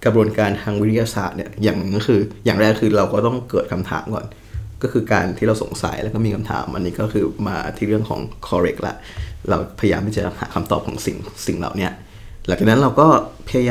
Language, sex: Thai, male